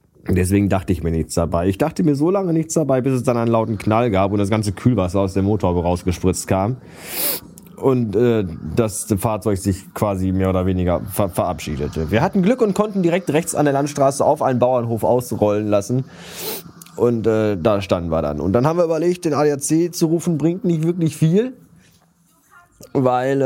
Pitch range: 95-135 Hz